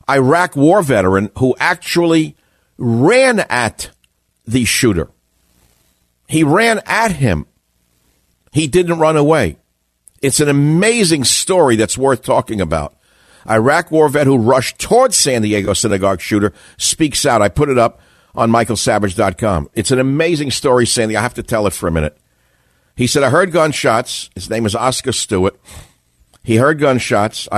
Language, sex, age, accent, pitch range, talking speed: English, male, 50-69, American, 100-140 Hz, 150 wpm